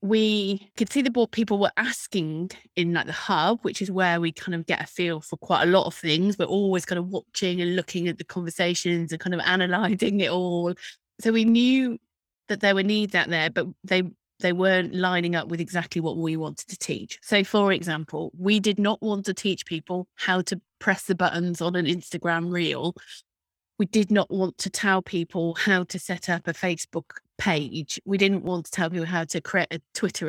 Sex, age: female, 30-49